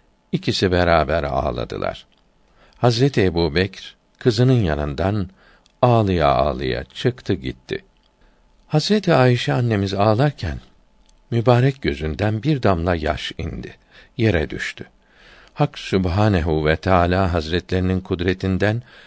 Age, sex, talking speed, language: 60-79, male, 90 wpm, Turkish